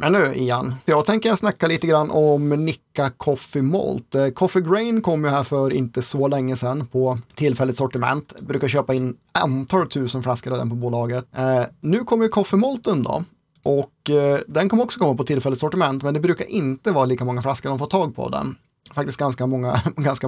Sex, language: male, Swedish